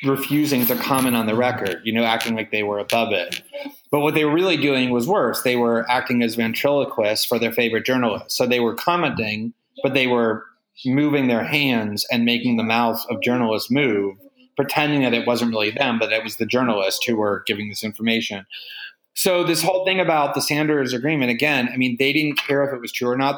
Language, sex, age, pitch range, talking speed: English, male, 30-49, 115-140 Hz, 215 wpm